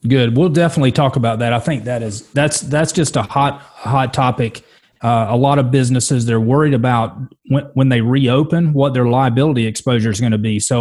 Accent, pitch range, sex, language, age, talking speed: American, 115-140 Hz, male, English, 30-49, 210 wpm